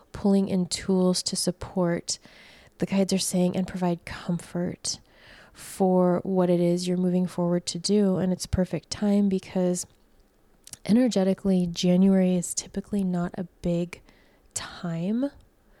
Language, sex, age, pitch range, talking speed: English, female, 20-39, 180-195 Hz, 130 wpm